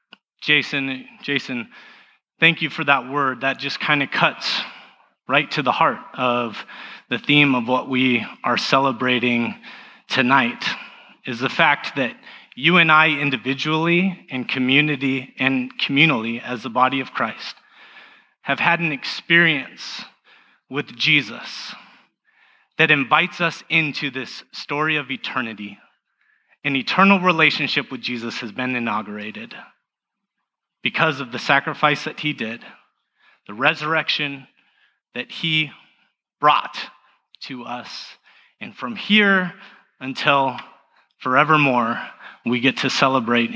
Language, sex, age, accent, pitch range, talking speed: English, male, 30-49, American, 125-160 Hz, 120 wpm